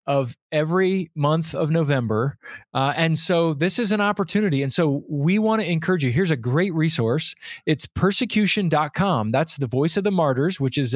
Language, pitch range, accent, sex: English, 135-175 Hz, American, male